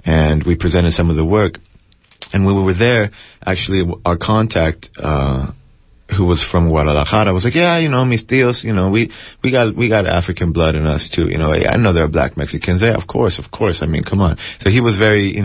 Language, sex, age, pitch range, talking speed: English, male, 30-49, 85-100 Hz, 240 wpm